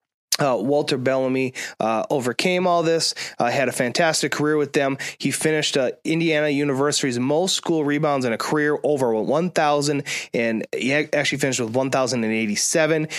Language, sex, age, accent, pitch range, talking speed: English, male, 20-39, American, 130-155 Hz, 150 wpm